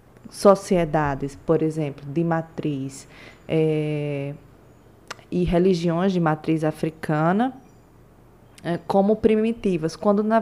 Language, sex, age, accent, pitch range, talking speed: Portuguese, female, 20-39, Brazilian, 165-215 Hz, 80 wpm